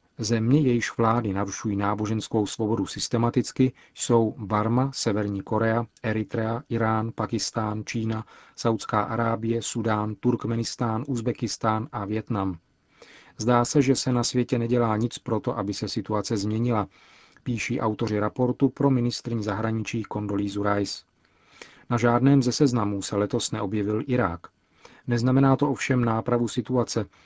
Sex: male